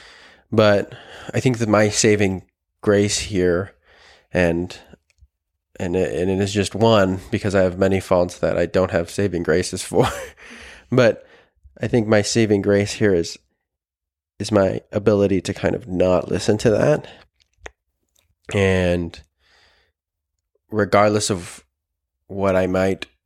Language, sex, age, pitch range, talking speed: English, male, 20-39, 85-100 Hz, 130 wpm